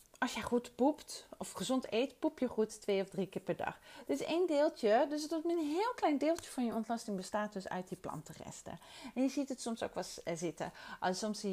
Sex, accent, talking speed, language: female, Dutch, 225 wpm, Dutch